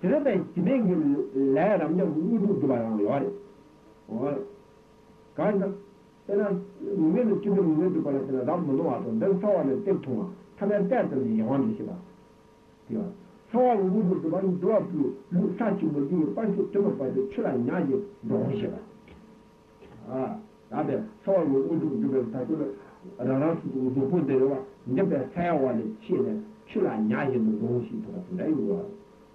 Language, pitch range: Italian, 140-205 Hz